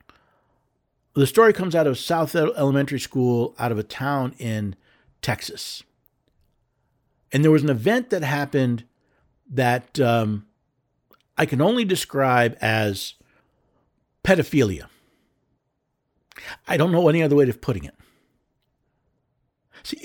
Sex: male